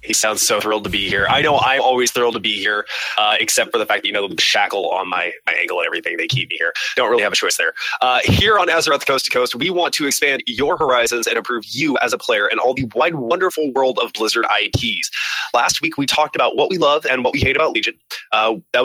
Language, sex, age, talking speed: English, male, 20-39, 270 wpm